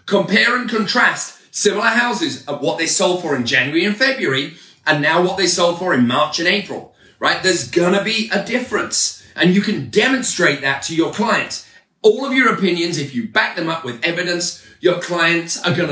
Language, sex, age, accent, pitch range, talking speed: English, male, 30-49, British, 145-215 Hz, 205 wpm